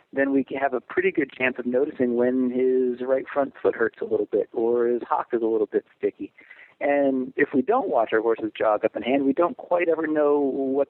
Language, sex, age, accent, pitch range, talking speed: English, male, 40-59, American, 115-160 Hz, 240 wpm